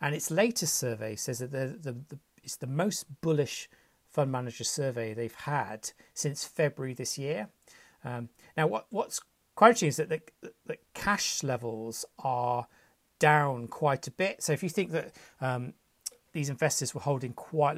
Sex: male